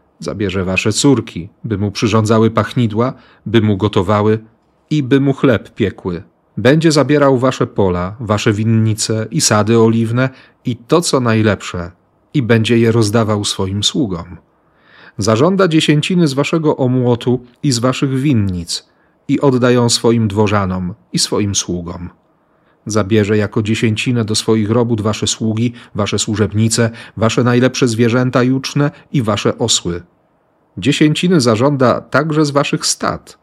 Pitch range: 105-130 Hz